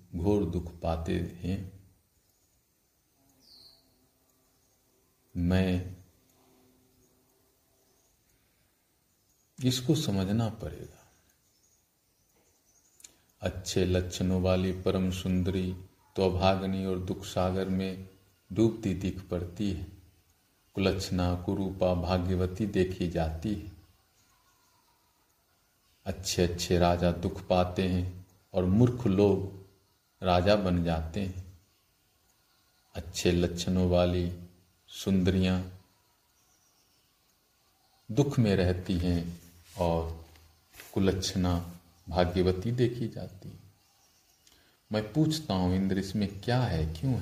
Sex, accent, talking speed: male, native, 80 wpm